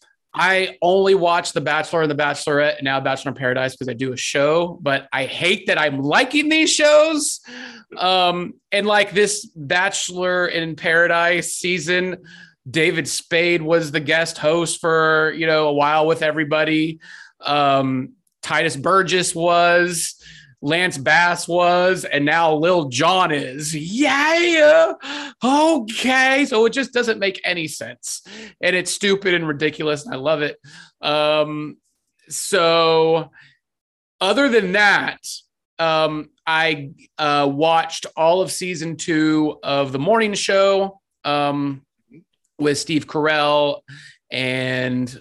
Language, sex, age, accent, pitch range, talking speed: English, male, 30-49, American, 150-185 Hz, 130 wpm